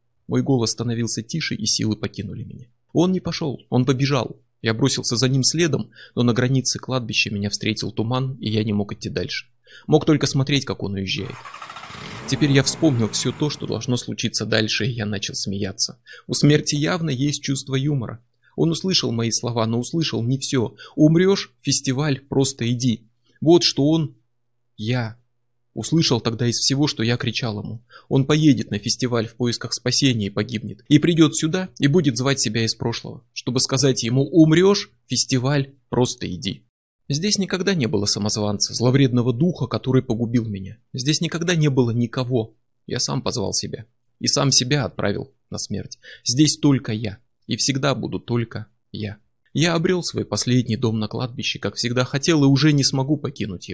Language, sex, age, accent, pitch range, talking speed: Russian, male, 20-39, native, 115-140 Hz, 170 wpm